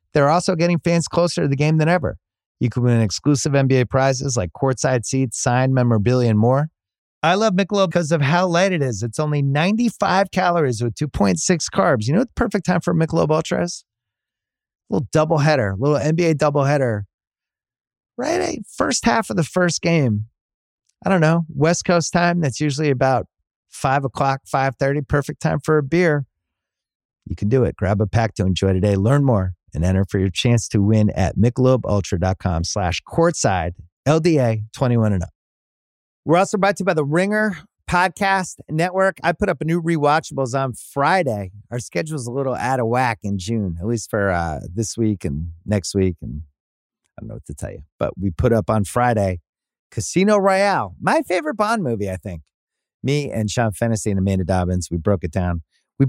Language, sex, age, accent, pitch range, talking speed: English, male, 30-49, American, 100-165 Hz, 185 wpm